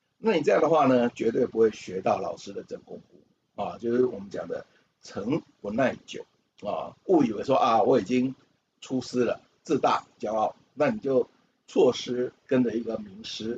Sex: male